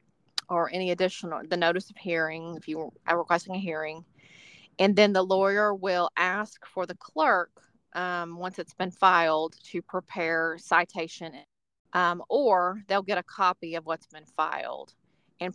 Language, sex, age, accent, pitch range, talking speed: English, female, 30-49, American, 160-185 Hz, 160 wpm